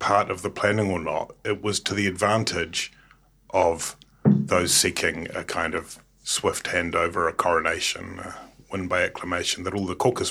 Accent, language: British, English